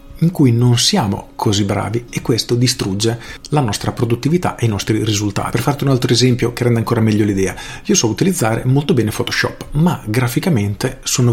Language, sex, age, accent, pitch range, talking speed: Italian, male, 40-59, native, 110-135 Hz, 185 wpm